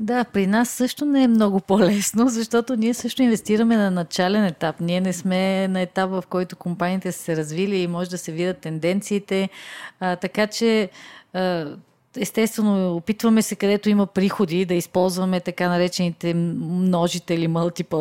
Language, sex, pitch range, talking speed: Bulgarian, female, 170-205 Hz, 160 wpm